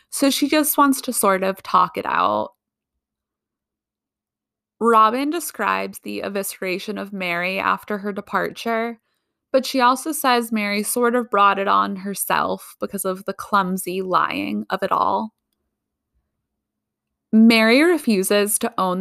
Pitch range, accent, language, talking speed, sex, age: 190-230 Hz, American, English, 135 wpm, female, 20-39